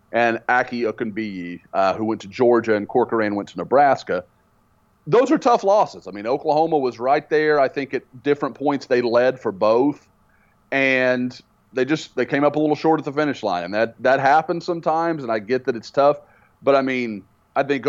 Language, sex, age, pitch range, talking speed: English, male, 30-49, 105-135 Hz, 205 wpm